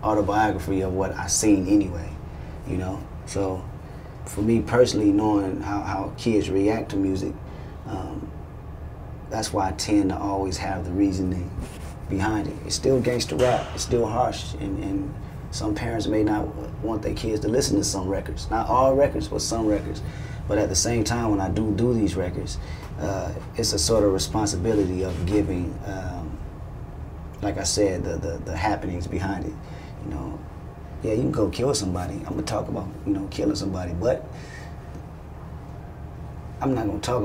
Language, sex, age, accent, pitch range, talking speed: French, male, 30-49, American, 80-105 Hz, 170 wpm